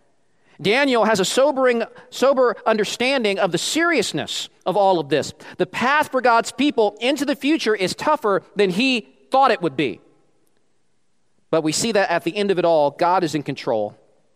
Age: 40-59